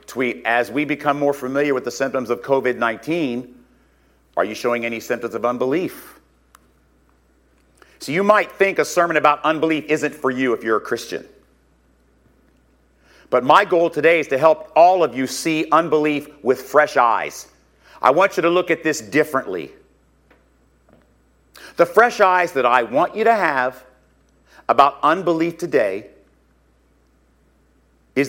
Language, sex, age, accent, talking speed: English, male, 50-69, American, 145 wpm